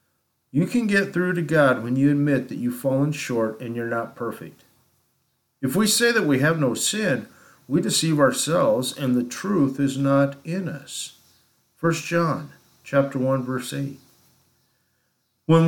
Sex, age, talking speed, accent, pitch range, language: male, 50-69, 155 wpm, American, 125-165 Hz, English